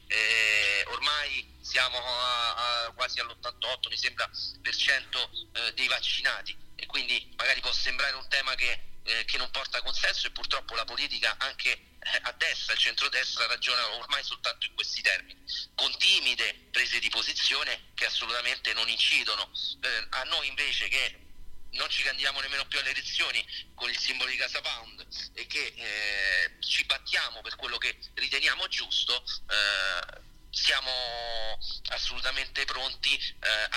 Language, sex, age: Italian, male, 40-59